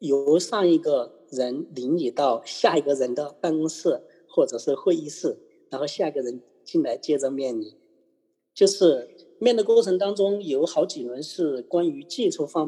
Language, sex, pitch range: Chinese, male, 140-230 Hz